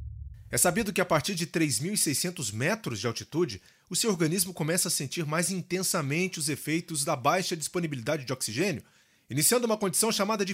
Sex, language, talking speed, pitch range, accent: male, Portuguese, 170 wpm, 145-195 Hz, Brazilian